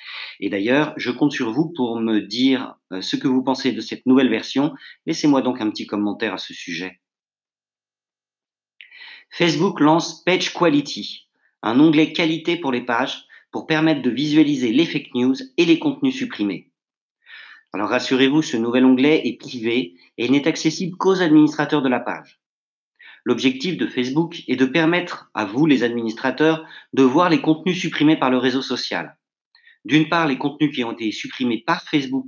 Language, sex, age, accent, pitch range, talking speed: French, male, 40-59, French, 125-160 Hz, 170 wpm